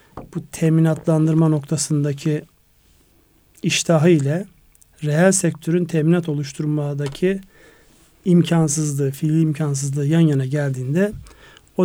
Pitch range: 145-170 Hz